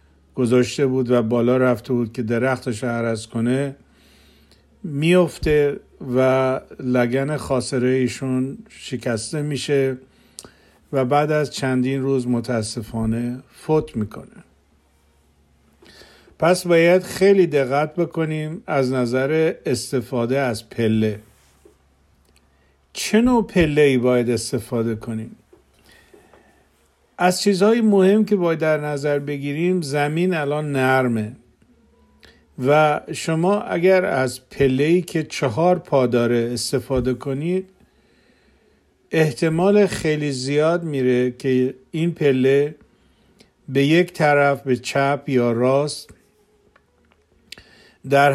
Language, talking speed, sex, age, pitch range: Persian, 95 wpm, male, 50-69, 120-155 Hz